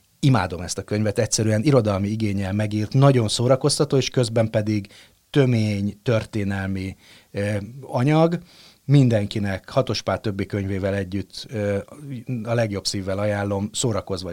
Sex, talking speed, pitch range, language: male, 115 wpm, 95-125 Hz, Hungarian